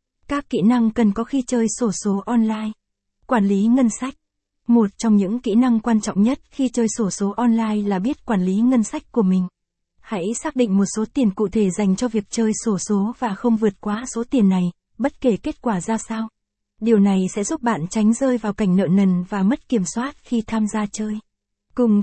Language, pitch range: Vietnamese, 205-235 Hz